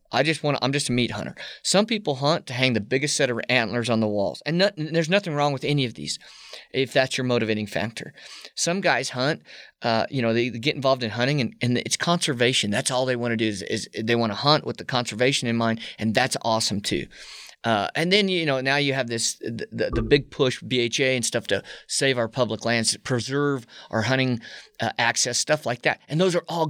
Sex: male